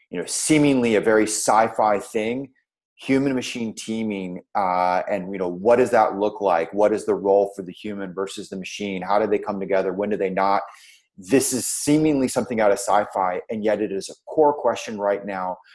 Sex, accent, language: male, American, English